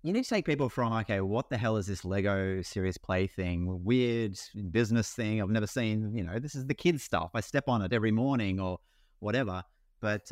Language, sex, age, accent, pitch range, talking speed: English, male, 30-49, Australian, 100-130 Hz, 220 wpm